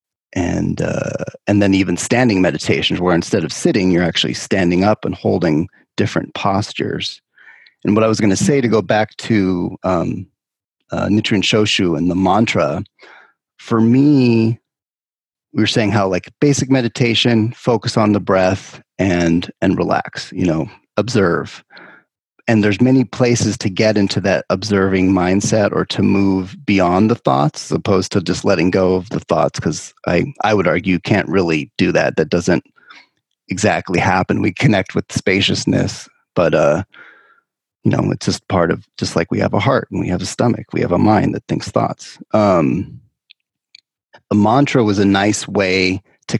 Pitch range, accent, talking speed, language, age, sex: 95-115 Hz, American, 170 wpm, English, 30-49, male